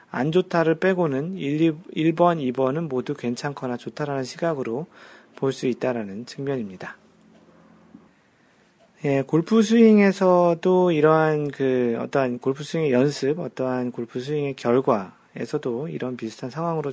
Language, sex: Korean, male